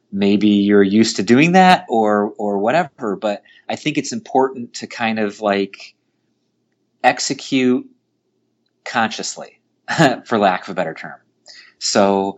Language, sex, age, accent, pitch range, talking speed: English, male, 30-49, American, 95-120 Hz, 130 wpm